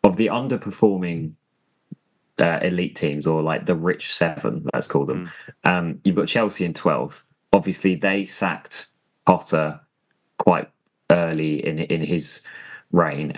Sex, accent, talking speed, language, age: male, British, 135 wpm, English, 20-39